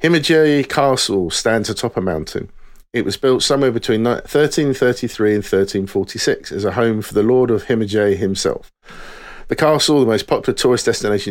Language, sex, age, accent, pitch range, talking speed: English, male, 50-69, British, 110-145 Hz, 160 wpm